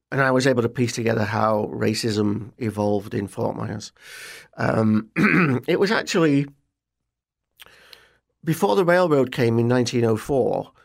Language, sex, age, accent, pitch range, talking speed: English, male, 40-59, British, 115-130 Hz, 125 wpm